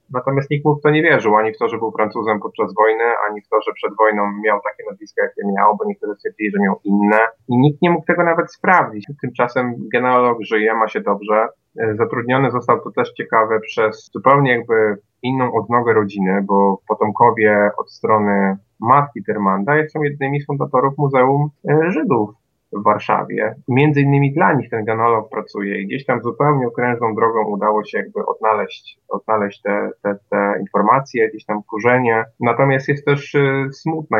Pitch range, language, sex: 100-130 Hz, Polish, male